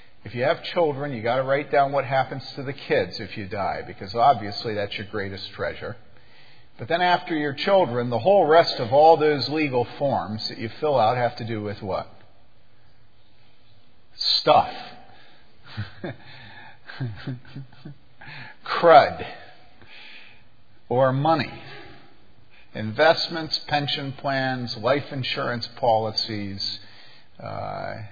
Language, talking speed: English, 115 wpm